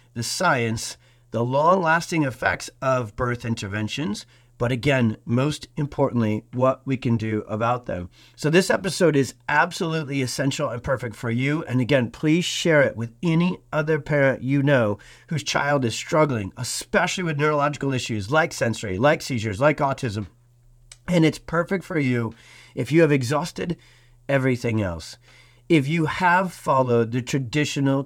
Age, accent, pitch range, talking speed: 40-59, American, 120-150 Hz, 150 wpm